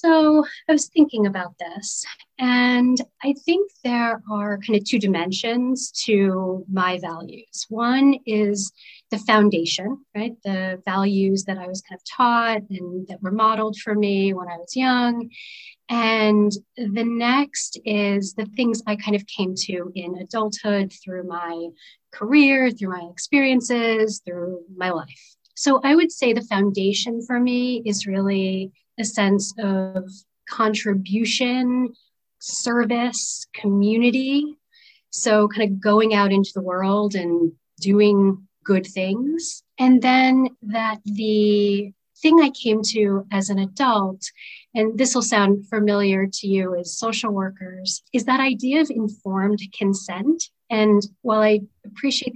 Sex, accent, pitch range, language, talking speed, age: female, American, 195-245 Hz, English, 140 wpm, 40-59